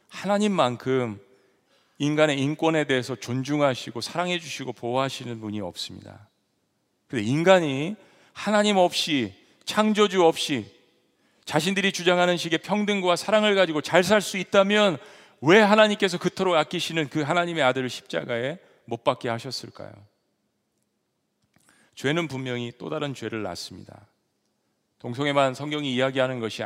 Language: Korean